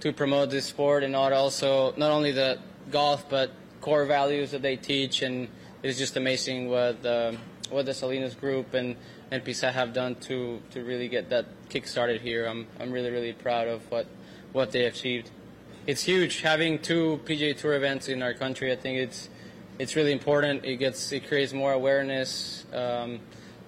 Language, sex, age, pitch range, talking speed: English, male, 20-39, 125-135 Hz, 185 wpm